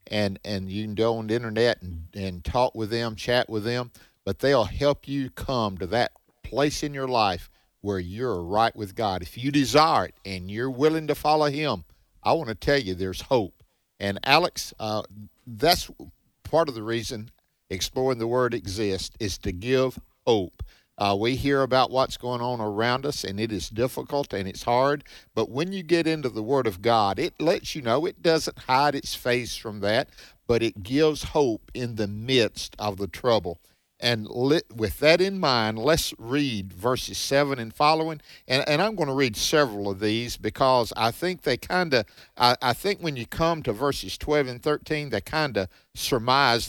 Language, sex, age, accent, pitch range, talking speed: English, male, 50-69, American, 105-140 Hz, 195 wpm